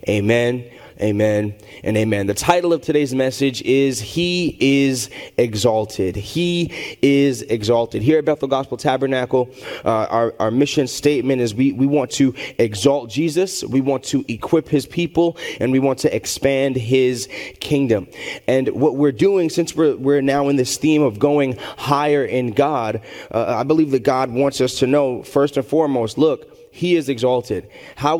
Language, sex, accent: English, male, American